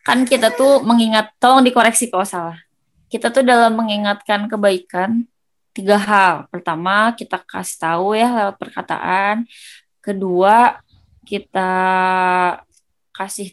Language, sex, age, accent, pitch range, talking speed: Indonesian, female, 20-39, native, 195-255 Hz, 110 wpm